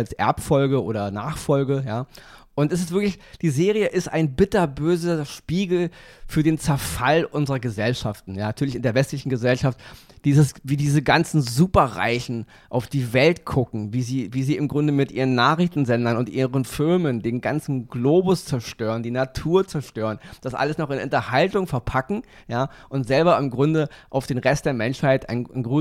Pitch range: 130-165 Hz